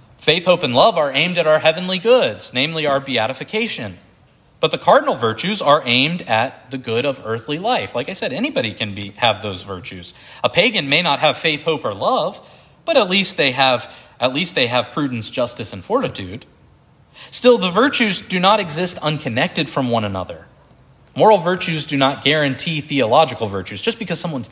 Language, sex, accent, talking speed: English, male, American, 175 wpm